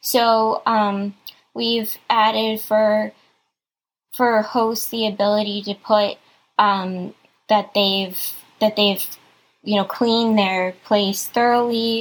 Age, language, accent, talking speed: 10-29, English, American, 110 wpm